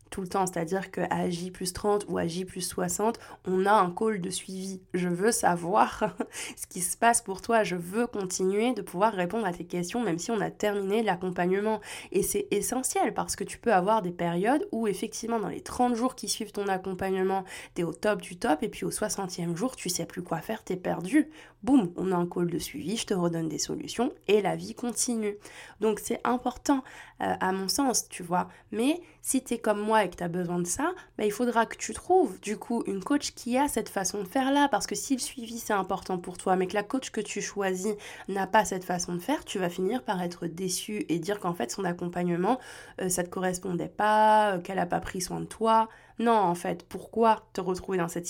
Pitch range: 180-225 Hz